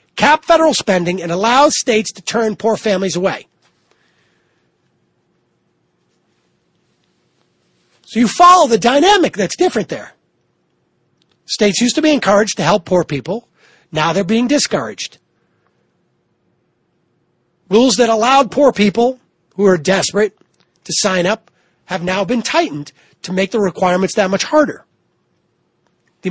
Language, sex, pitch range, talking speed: English, male, 175-235 Hz, 125 wpm